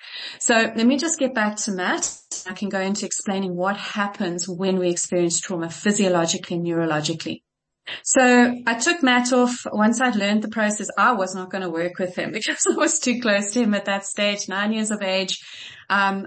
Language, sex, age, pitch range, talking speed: English, female, 30-49, 190-230 Hz, 205 wpm